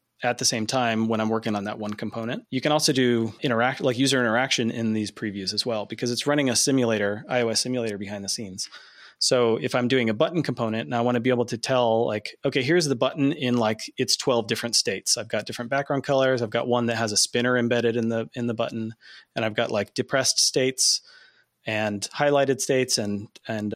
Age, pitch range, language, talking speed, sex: 30-49, 110-130 Hz, English, 225 wpm, male